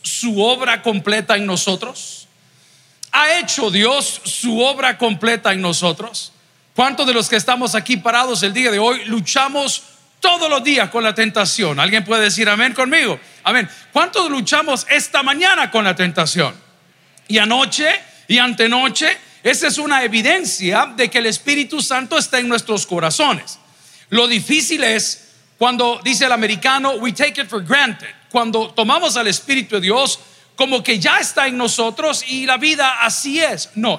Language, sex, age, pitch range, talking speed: Spanish, male, 40-59, 215-280 Hz, 160 wpm